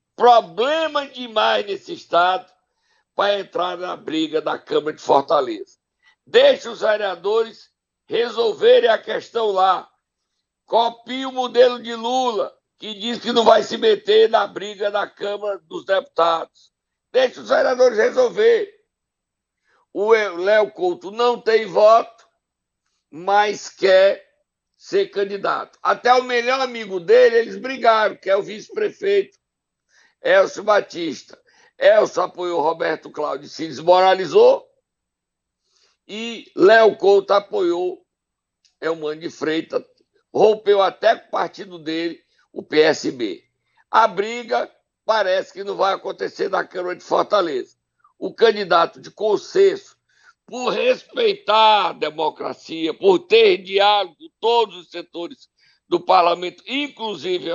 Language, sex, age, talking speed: Portuguese, male, 60-79, 120 wpm